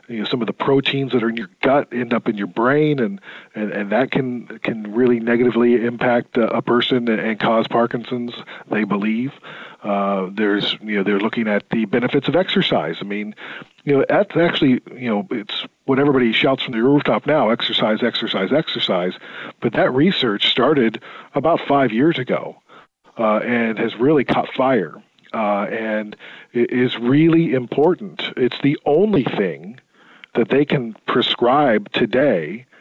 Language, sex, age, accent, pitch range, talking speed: English, male, 40-59, American, 115-140 Hz, 170 wpm